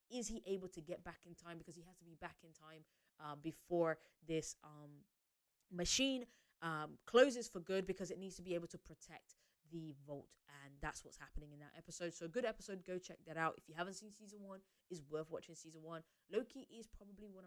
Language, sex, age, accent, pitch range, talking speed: English, female, 20-39, British, 170-245 Hz, 225 wpm